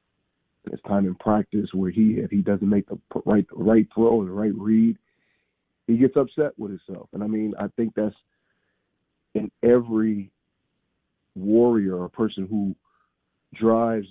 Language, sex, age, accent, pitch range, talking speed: English, male, 40-59, American, 105-130 Hz, 155 wpm